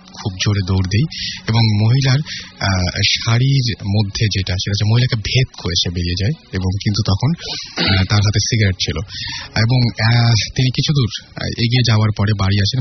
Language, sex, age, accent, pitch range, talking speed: Bengali, male, 30-49, native, 95-115 Hz, 65 wpm